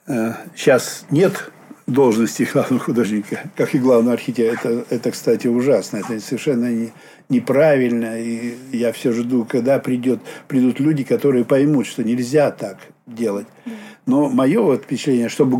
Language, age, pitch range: Russian, 60-79, 120-150 Hz